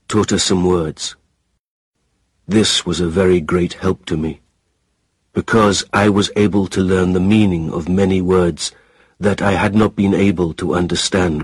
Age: 50-69